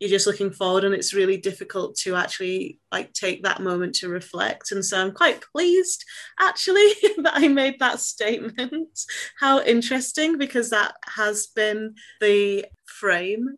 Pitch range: 170-210 Hz